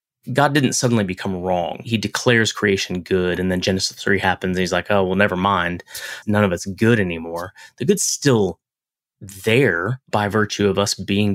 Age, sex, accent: 30-49, male, American